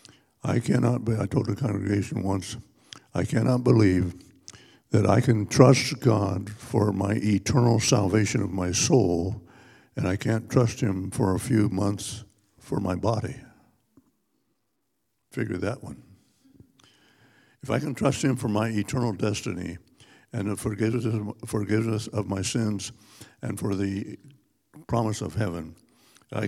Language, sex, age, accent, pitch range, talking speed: English, male, 60-79, American, 95-120 Hz, 135 wpm